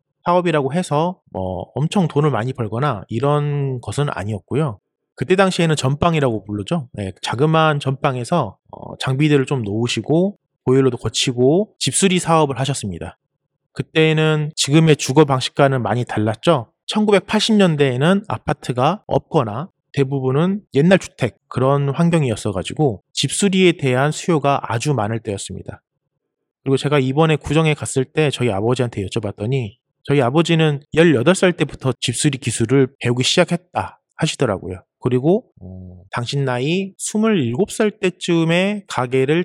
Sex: male